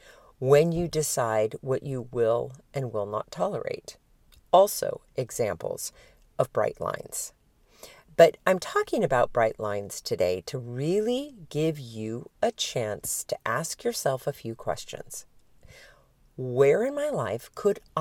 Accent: American